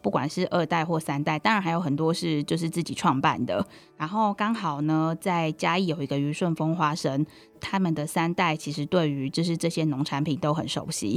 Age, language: 20-39, Chinese